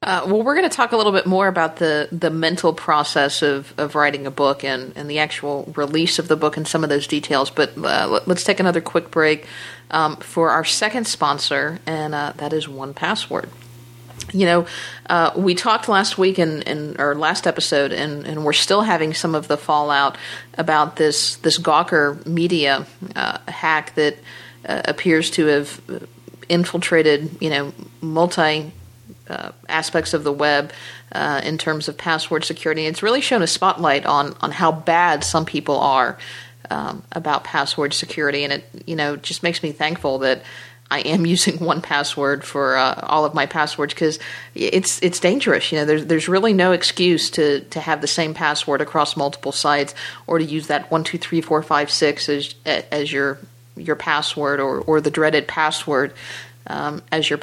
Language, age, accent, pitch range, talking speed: English, 50-69, American, 145-165 Hz, 185 wpm